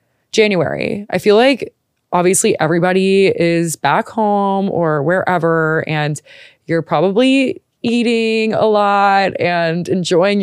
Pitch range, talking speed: 155-200 Hz, 110 wpm